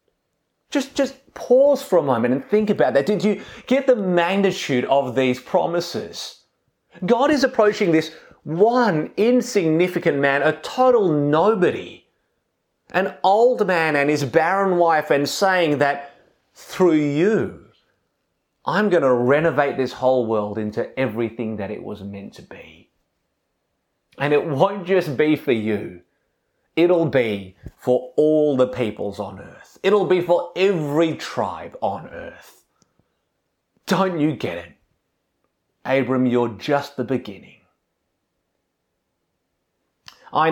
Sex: male